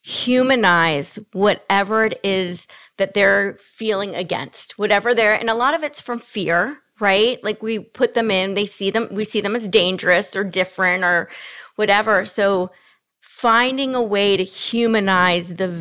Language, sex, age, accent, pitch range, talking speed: English, female, 30-49, American, 185-220 Hz, 160 wpm